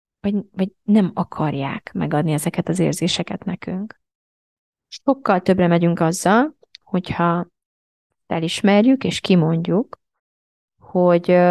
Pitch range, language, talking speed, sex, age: 165-205 Hz, Hungarian, 90 wpm, female, 20-39